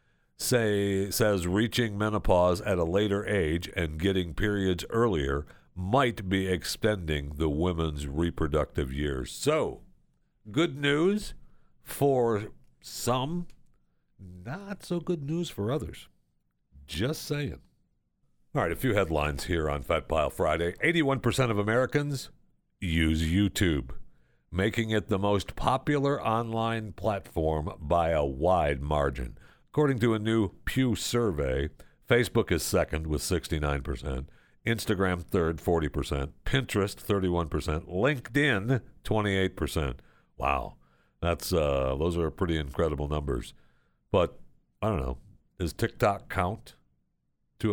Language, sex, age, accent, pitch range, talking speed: English, male, 60-79, American, 75-110 Hz, 115 wpm